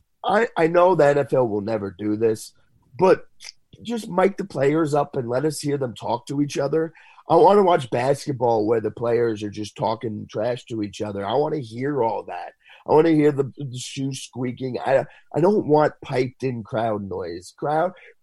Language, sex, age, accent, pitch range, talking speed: English, male, 30-49, American, 110-150 Hz, 200 wpm